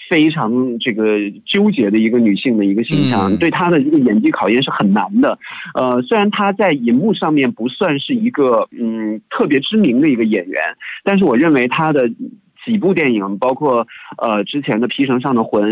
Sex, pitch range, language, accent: male, 110-160 Hz, Chinese, native